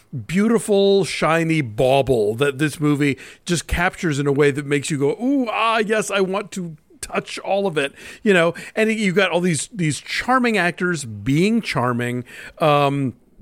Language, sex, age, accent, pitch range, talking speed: English, male, 50-69, American, 150-200 Hz, 170 wpm